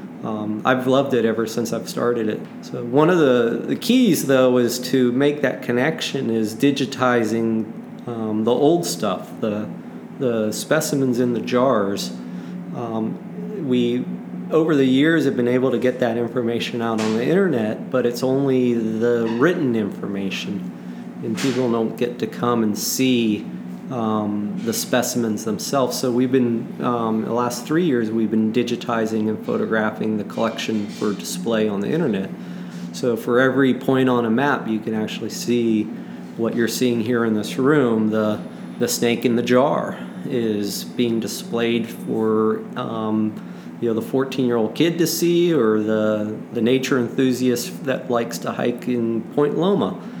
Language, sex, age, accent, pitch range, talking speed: English, male, 40-59, American, 110-130 Hz, 165 wpm